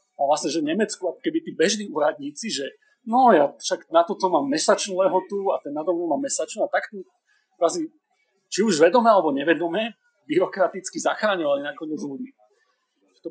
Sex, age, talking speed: male, 30-49, 175 wpm